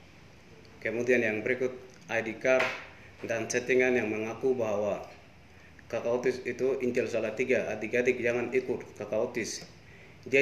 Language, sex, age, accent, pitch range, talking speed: Indonesian, male, 30-49, native, 115-135 Hz, 125 wpm